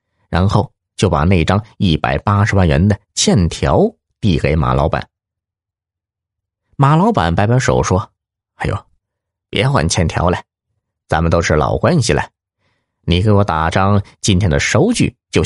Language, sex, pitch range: Chinese, male, 85-115 Hz